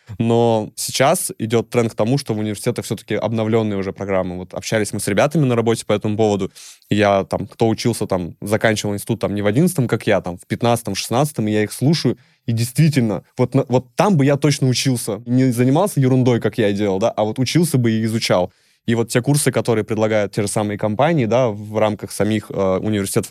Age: 20-39